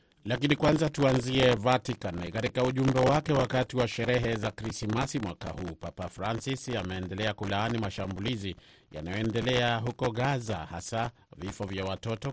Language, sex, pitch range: Swahili, male, 95-125 Hz